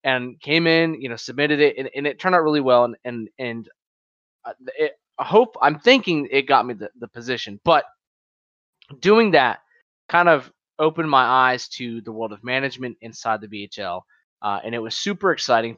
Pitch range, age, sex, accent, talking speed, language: 105-140 Hz, 20-39, male, American, 190 wpm, English